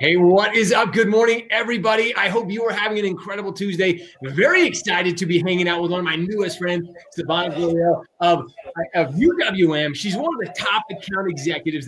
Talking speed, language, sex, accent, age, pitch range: 195 wpm, English, male, American, 30-49, 160-210 Hz